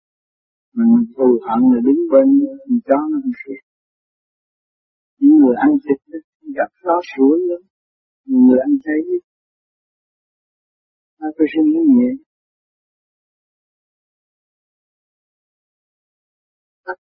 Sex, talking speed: male, 90 wpm